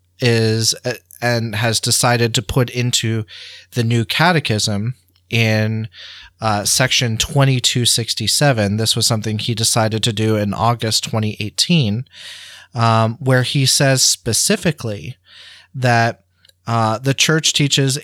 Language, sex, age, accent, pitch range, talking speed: English, male, 30-49, American, 105-130 Hz, 115 wpm